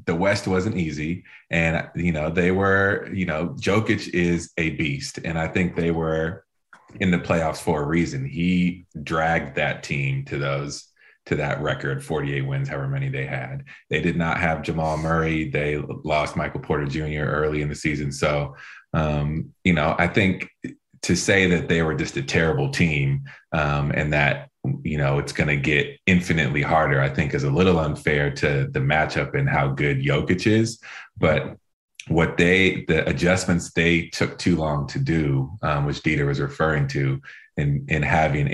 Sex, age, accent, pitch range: male, 30-49, American, 70-85 Hz